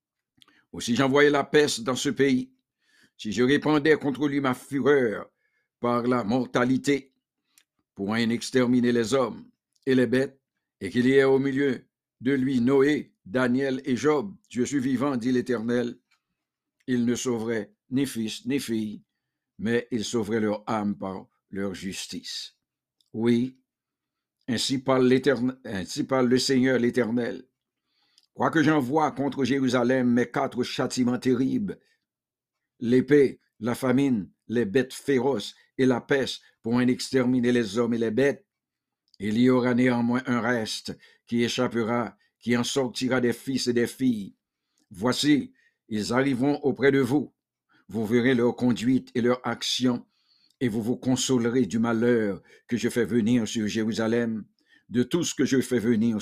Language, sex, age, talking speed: English, male, 60-79, 150 wpm